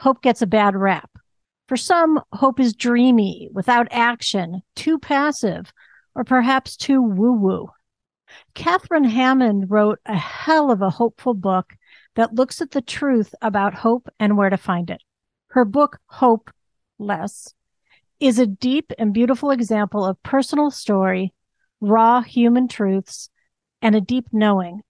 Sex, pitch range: female, 200-255 Hz